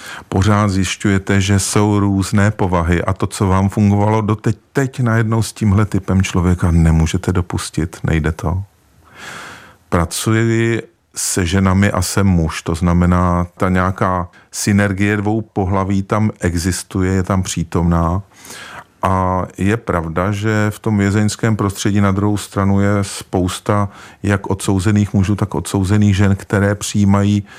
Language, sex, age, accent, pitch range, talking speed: Czech, male, 40-59, native, 90-110 Hz, 135 wpm